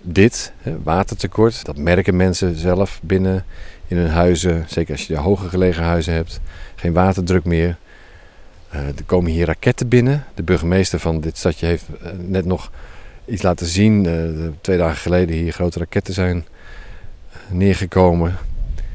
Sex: male